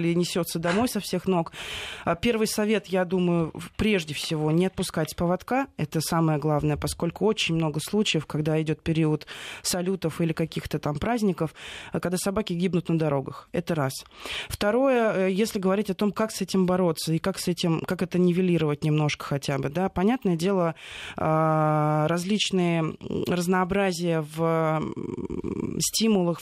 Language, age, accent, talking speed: Russian, 20-39, native, 145 wpm